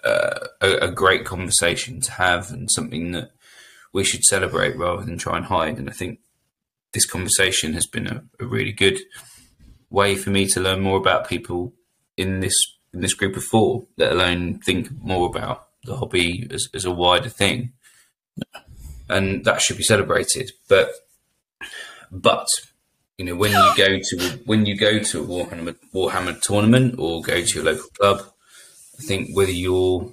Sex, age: male, 20-39